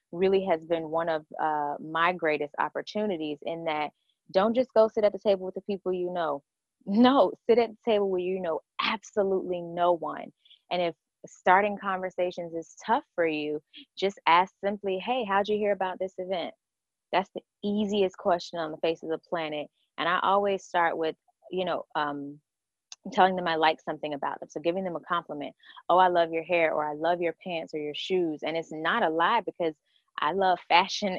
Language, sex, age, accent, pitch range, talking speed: English, female, 20-39, American, 165-200 Hz, 200 wpm